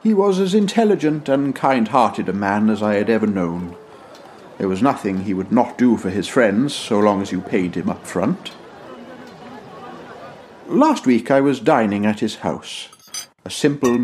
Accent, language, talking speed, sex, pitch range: British, English, 175 wpm, male, 100-135 Hz